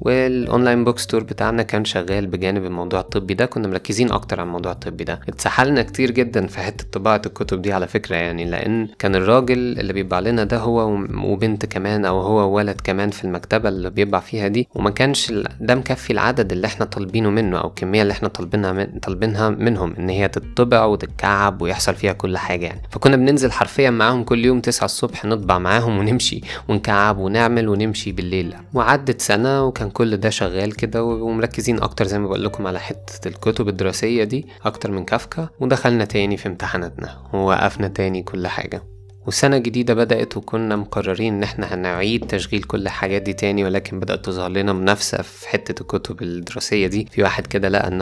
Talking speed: 180 wpm